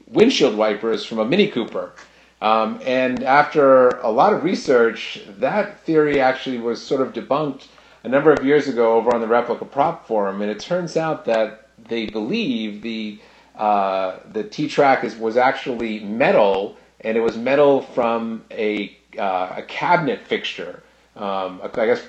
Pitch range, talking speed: 105-130 Hz, 160 wpm